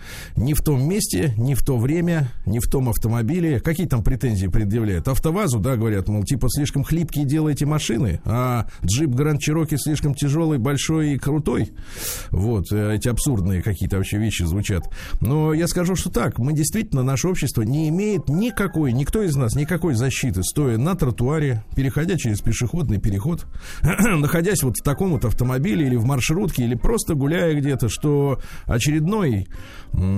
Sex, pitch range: male, 105-150 Hz